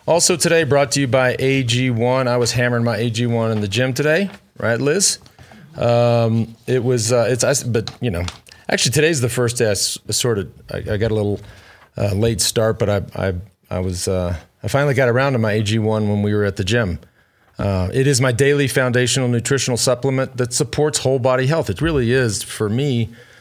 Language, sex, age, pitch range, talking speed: English, male, 40-59, 110-135 Hz, 210 wpm